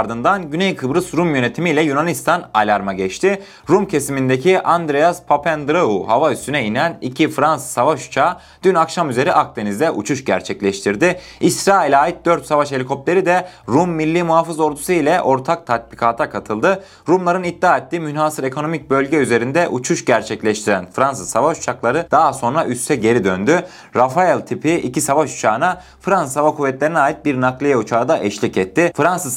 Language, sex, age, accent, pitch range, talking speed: Turkish, male, 30-49, native, 115-160 Hz, 145 wpm